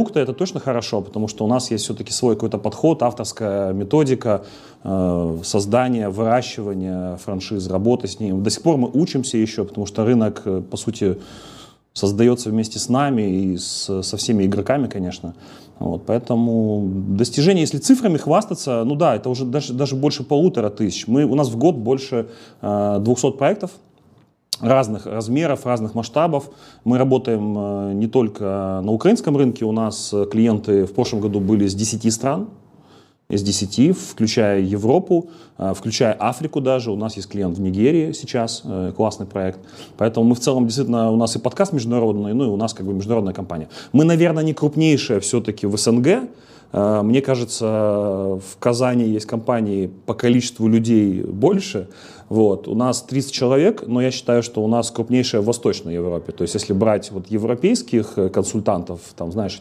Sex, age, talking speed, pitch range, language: male, 30-49, 165 wpm, 100-130 Hz, Russian